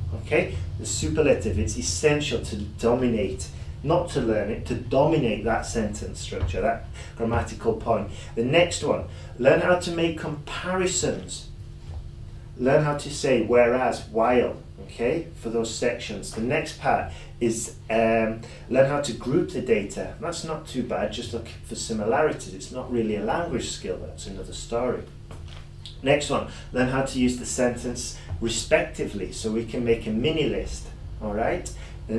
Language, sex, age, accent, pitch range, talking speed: English, male, 30-49, British, 100-130 Hz, 155 wpm